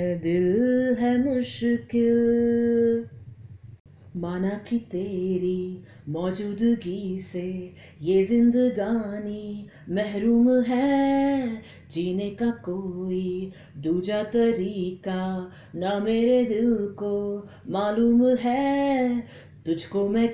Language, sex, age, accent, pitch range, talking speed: Hindi, female, 20-39, native, 210-310 Hz, 65 wpm